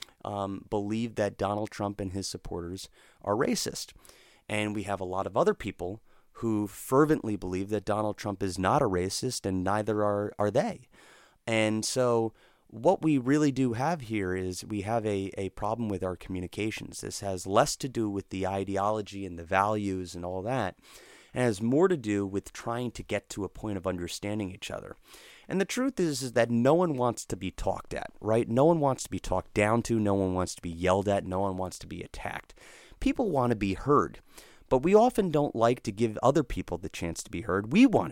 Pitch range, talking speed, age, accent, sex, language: 95-130 Hz, 215 wpm, 30-49, American, male, English